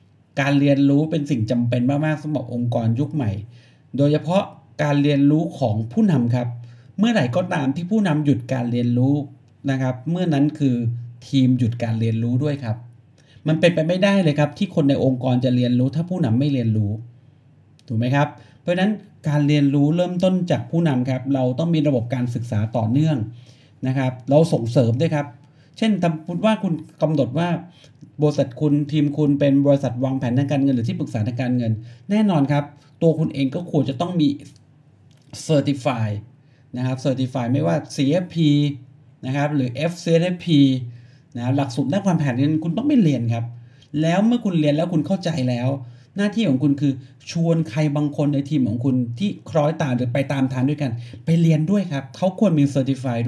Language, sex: Thai, male